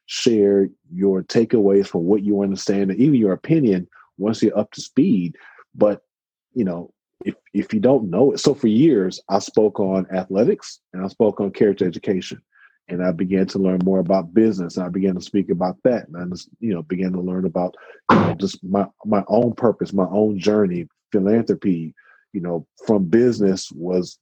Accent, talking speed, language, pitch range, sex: American, 195 wpm, English, 95-110 Hz, male